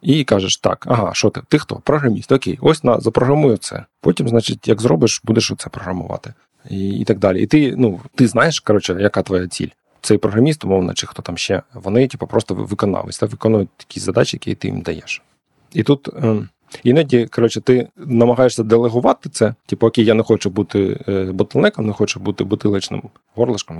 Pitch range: 100-120 Hz